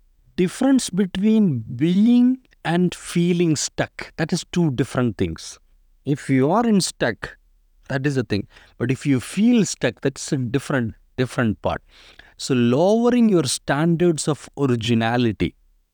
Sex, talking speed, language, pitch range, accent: male, 135 wpm, English, 115-160 Hz, Indian